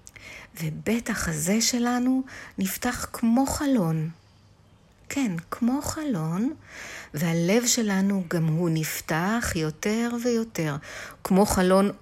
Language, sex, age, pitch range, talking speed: Hebrew, female, 60-79, 145-230 Hz, 90 wpm